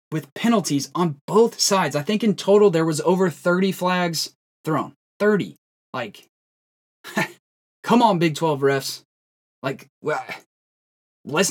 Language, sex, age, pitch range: English, male, 20-39, 145-195 Hz